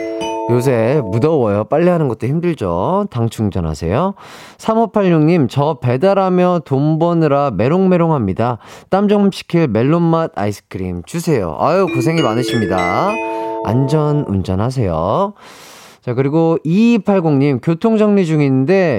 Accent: native